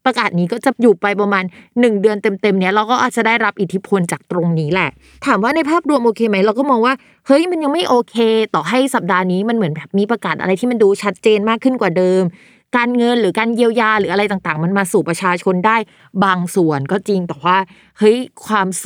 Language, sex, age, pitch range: Thai, female, 20-39, 185-240 Hz